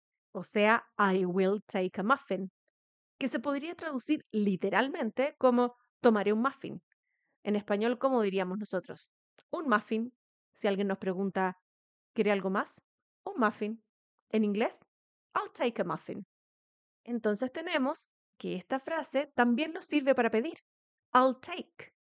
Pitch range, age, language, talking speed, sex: 210-280 Hz, 30-49, Spanish, 135 wpm, female